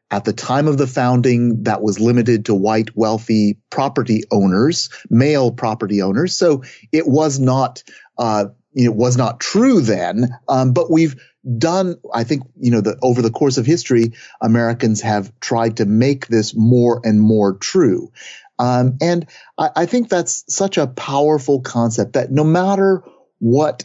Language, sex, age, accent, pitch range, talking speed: English, male, 40-59, American, 115-140 Hz, 165 wpm